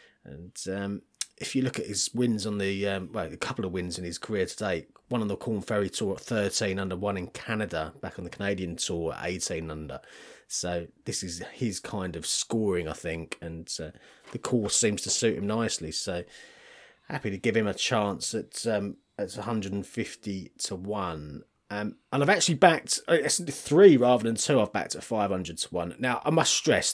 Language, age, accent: English, 30-49, British